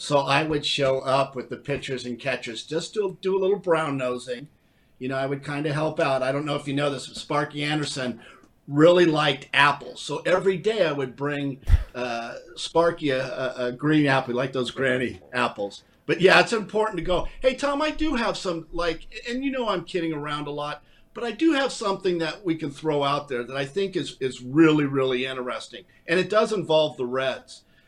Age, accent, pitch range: 50-69, American, 135-185 Hz